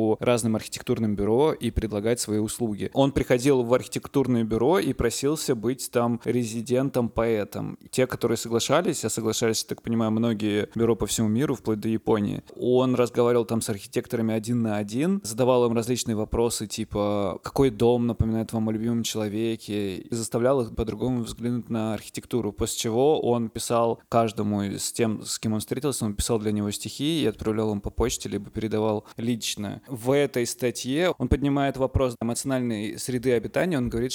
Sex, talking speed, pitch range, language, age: male, 165 wpm, 110-125 Hz, Russian, 20-39